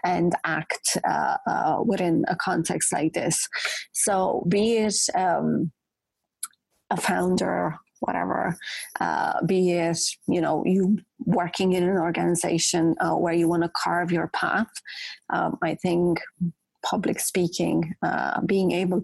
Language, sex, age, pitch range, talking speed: English, female, 30-49, 170-195 Hz, 130 wpm